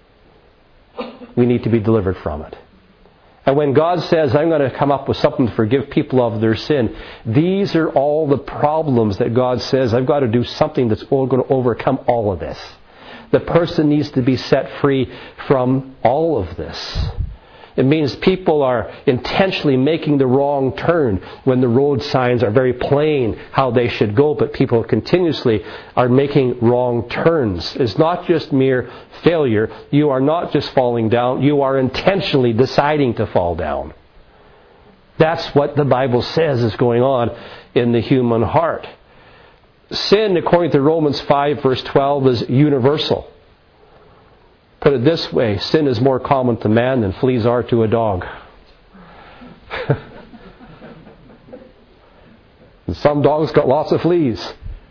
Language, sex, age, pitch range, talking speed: English, male, 40-59, 120-155 Hz, 155 wpm